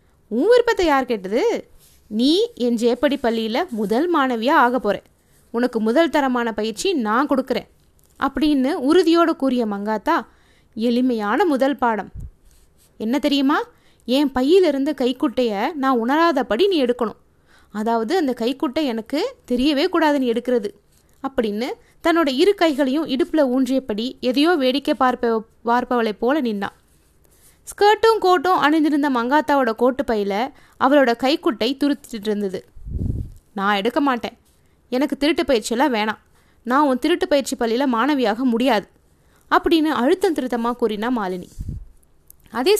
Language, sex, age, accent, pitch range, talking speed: Tamil, female, 20-39, native, 230-300 Hz, 110 wpm